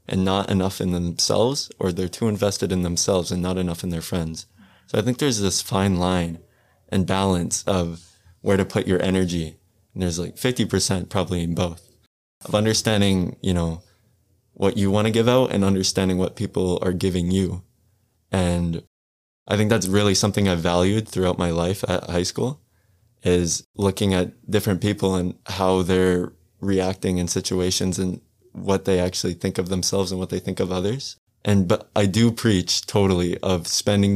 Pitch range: 90-100 Hz